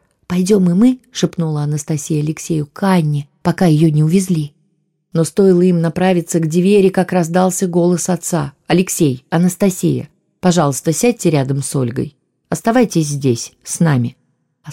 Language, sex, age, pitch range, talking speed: Russian, female, 20-39, 140-170 Hz, 135 wpm